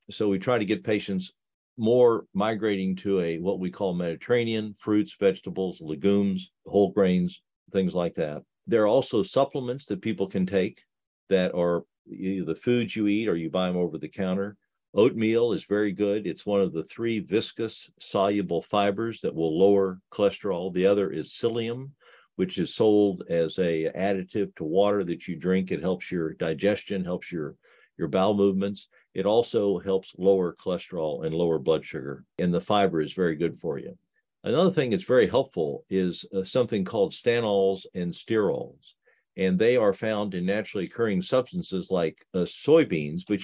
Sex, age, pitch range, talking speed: male, 50-69, 90-110 Hz, 175 wpm